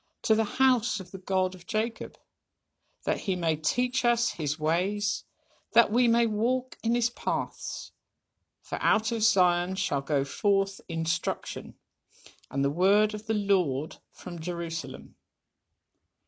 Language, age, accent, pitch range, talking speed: English, 50-69, British, 155-210 Hz, 140 wpm